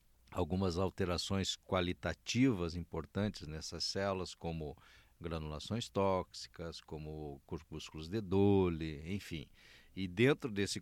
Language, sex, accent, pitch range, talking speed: Portuguese, male, Brazilian, 85-115 Hz, 95 wpm